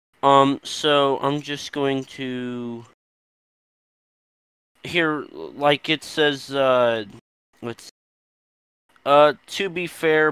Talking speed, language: 100 wpm, English